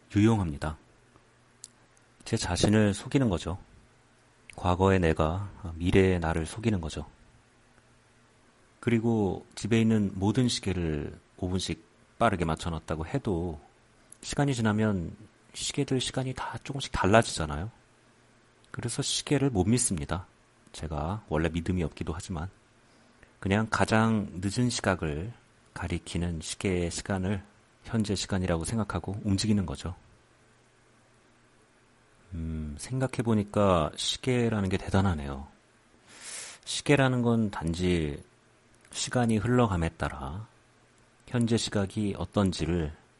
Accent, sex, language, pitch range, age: native, male, Korean, 85-120 Hz, 40-59